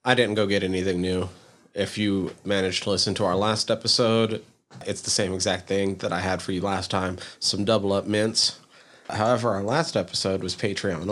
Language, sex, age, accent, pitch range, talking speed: English, male, 30-49, American, 95-110 Hz, 200 wpm